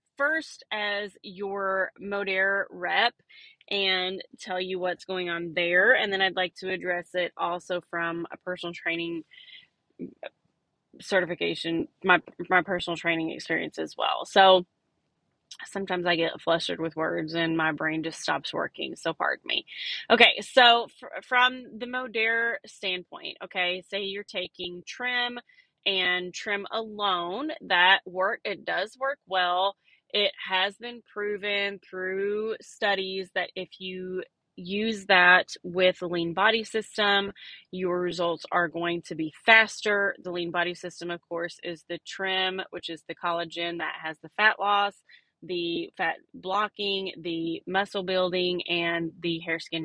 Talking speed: 145 wpm